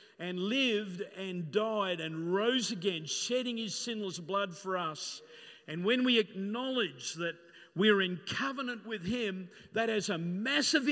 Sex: male